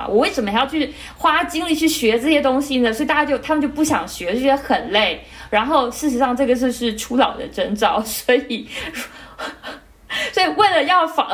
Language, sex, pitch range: Chinese, female, 210-275 Hz